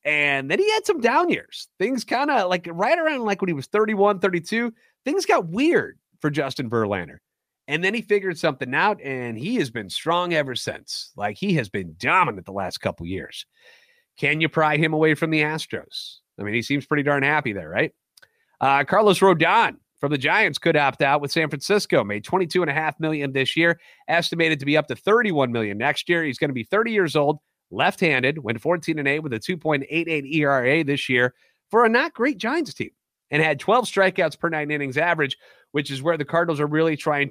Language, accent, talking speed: English, American, 210 wpm